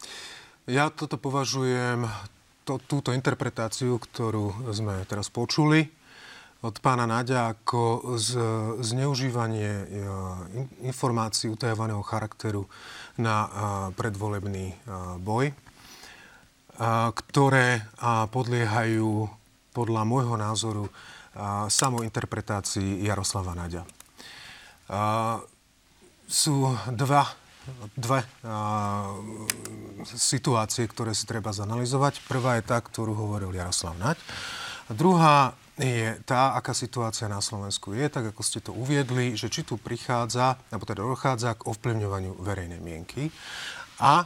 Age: 30-49